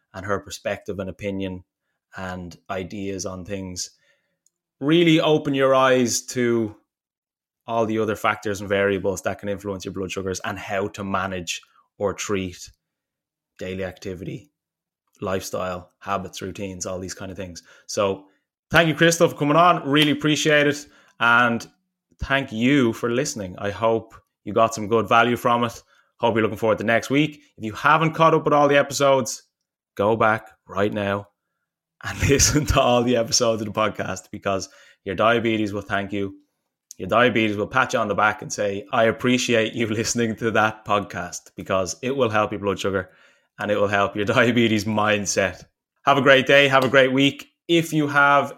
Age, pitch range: 20-39, 100-135 Hz